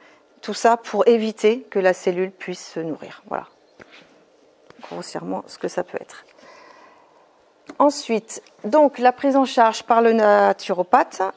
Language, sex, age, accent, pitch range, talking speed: English, female, 40-59, French, 195-245 Hz, 135 wpm